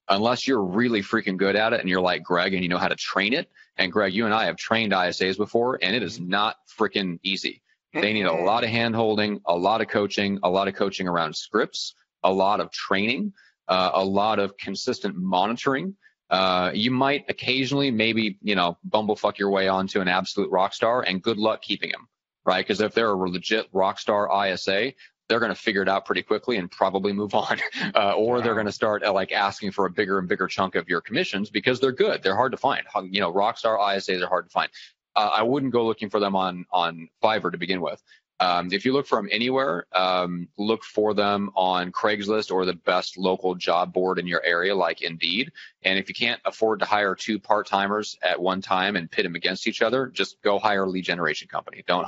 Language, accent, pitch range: English, American, 95-115 Hz